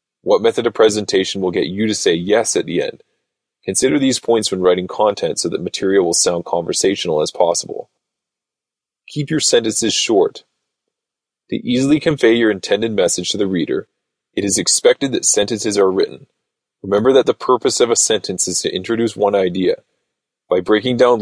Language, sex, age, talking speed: English, male, 20-39, 175 wpm